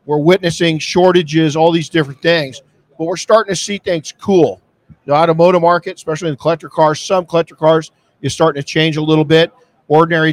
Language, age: English, 50-69